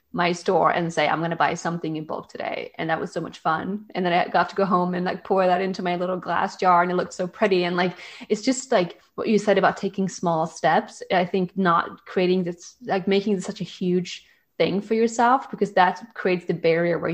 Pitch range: 165-190 Hz